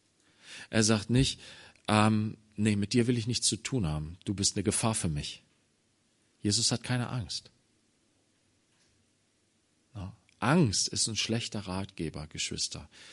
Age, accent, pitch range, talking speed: 40-59, German, 95-115 Hz, 130 wpm